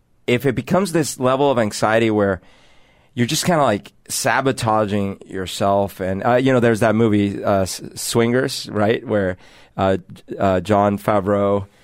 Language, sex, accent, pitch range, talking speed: English, male, American, 105-140 Hz, 150 wpm